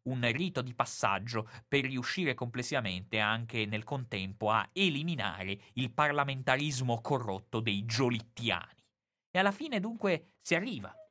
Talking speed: 125 wpm